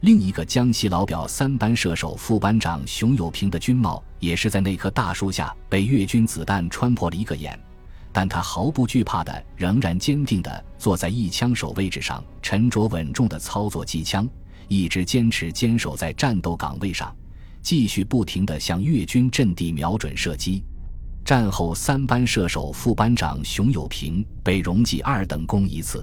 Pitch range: 80-115 Hz